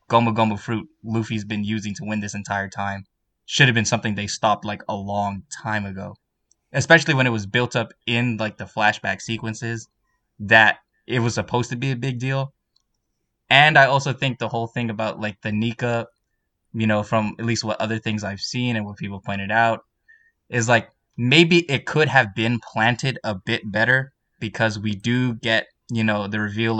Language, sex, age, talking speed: English, male, 10-29, 195 wpm